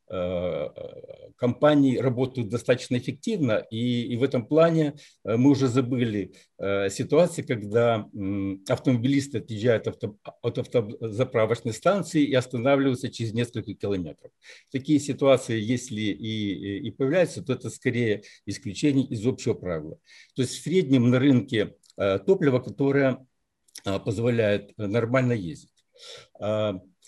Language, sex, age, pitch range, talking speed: Ukrainian, male, 60-79, 110-140 Hz, 105 wpm